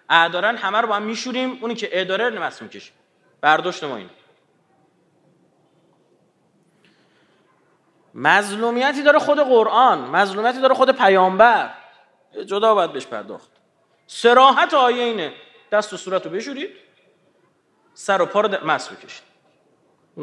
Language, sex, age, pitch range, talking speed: Persian, male, 30-49, 205-265 Hz, 120 wpm